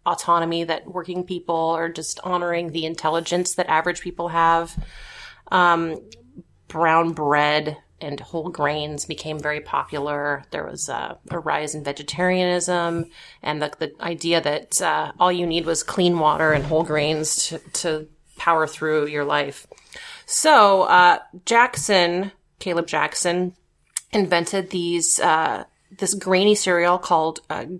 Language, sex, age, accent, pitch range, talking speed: English, female, 30-49, American, 150-180 Hz, 135 wpm